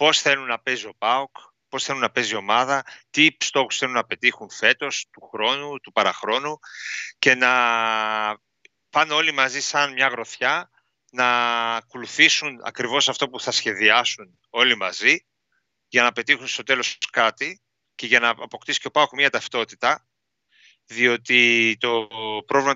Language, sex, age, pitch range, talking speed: Greek, male, 40-59, 115-140 Hz, 150 wpm